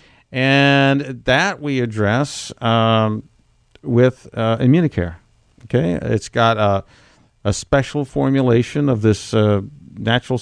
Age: 50-69